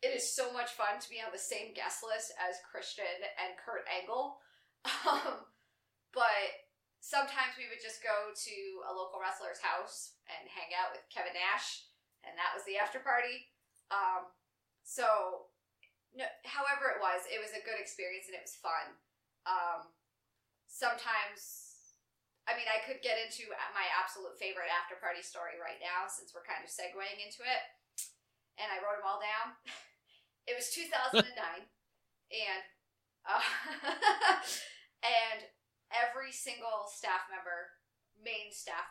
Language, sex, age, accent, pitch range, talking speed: English, female, 20-39, American, 180-235 Hz, 150 wpm